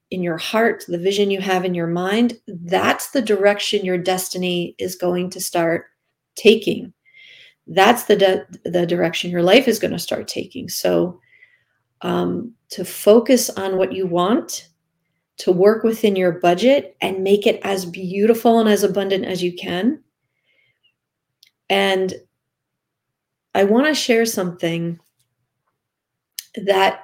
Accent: American